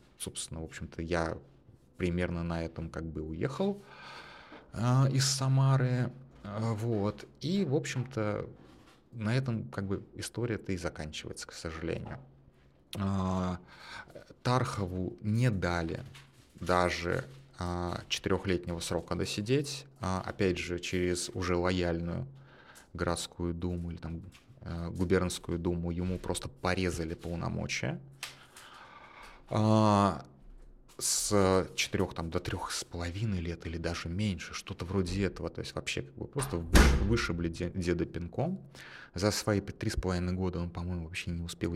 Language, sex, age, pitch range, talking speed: Russian, male, 30-49, 85-115 Hz, 125 wpm